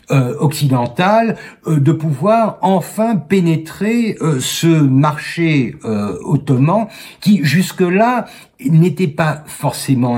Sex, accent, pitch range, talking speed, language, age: male, French, 135-175 Hz, 100 wpm, French, 60-79